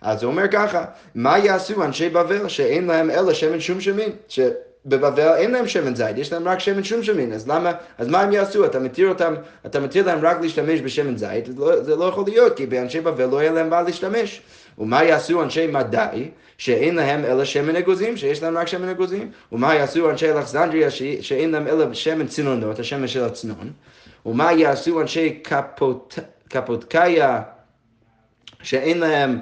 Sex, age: male, 20-39